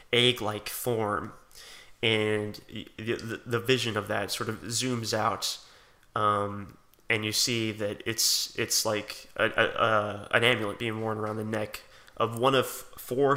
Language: English